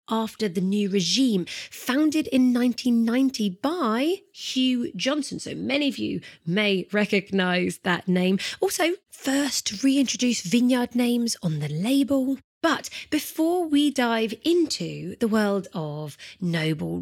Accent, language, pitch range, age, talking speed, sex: British, English, 195-260 Hz, 30-49, 125 wpm, female